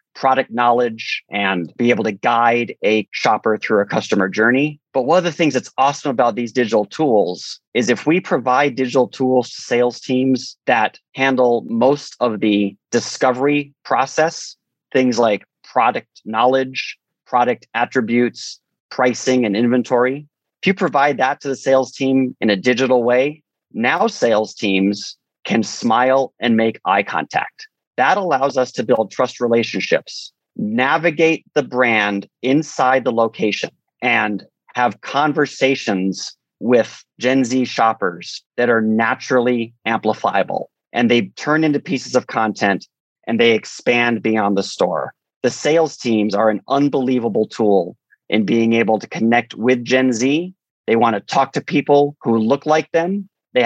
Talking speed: 150 wpm